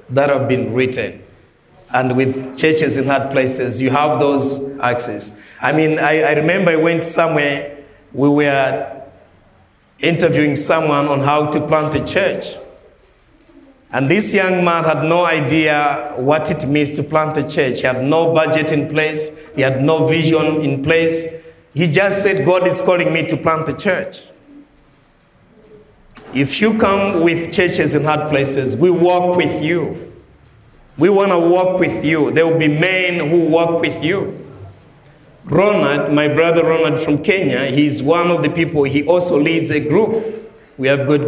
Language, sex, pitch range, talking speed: English, male, 145-170 Hz, 165 wpm